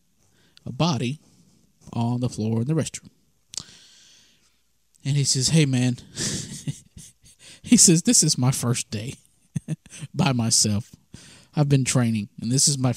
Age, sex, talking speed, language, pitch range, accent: 20-39, male, 135 wpm, English, 120-155 Hz, American